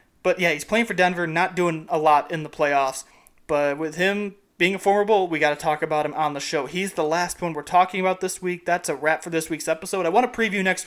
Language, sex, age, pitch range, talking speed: English, male, 30-49, 155-195 Hz, 275 wpm